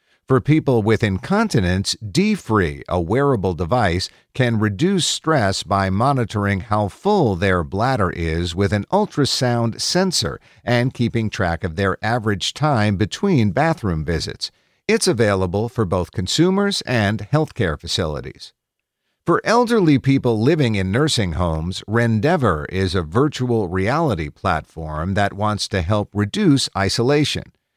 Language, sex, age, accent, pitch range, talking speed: English, male, 50-69, American, 95-135 Hz, 130 wpm